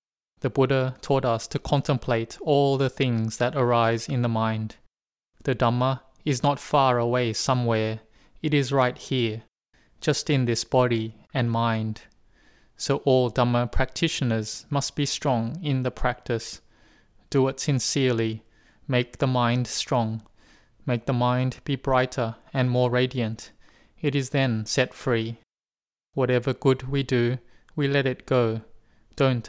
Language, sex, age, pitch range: English, male, 20-39, 115-135 Hz